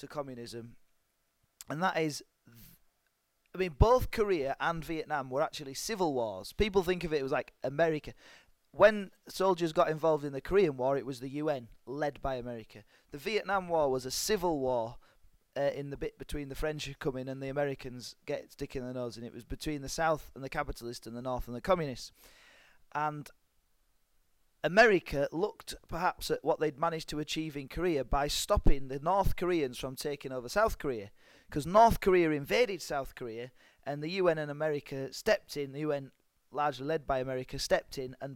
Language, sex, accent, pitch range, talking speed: English, male, British, 130-170 Hz, 190 wpm